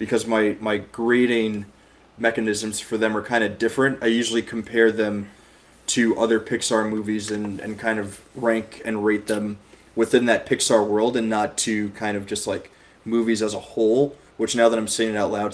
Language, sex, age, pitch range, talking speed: English, male, 20-39, 105-115 Hz, 195 wpm